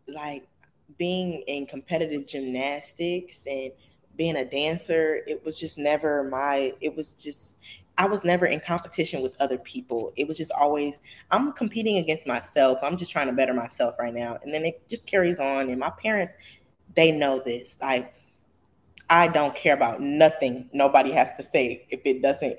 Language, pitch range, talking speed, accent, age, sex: English, 135-185 Hz, 175 wpm, American, 10-29, female